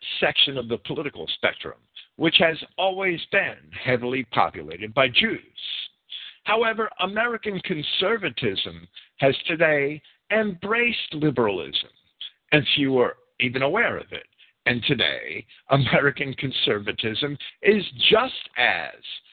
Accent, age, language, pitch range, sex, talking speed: American, 50-69, English, 120-185 Hz, male, 105 wpm